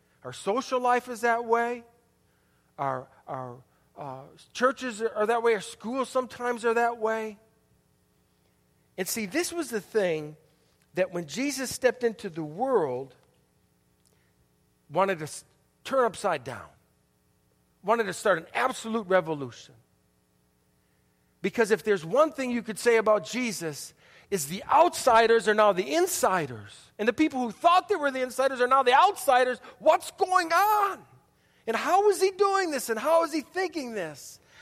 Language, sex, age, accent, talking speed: English, male, 50-69, American, 155 wpm